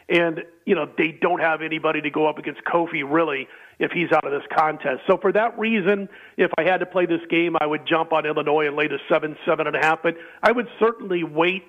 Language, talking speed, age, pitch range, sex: English, 245 wpm, 40-59, 160-190 Hz, male